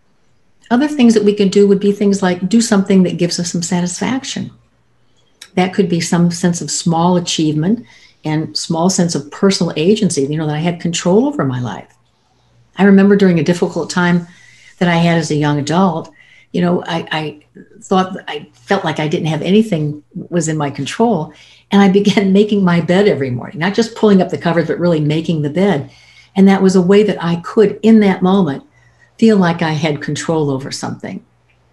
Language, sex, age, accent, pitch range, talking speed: English, female, 60-79, American, 155-200 Hz, 200 wpm